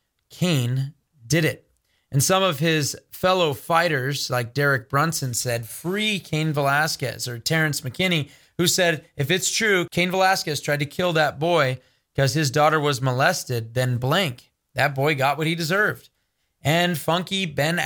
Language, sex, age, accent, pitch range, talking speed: English, male, 30-49, American, 130-165 Hz, 160 wpm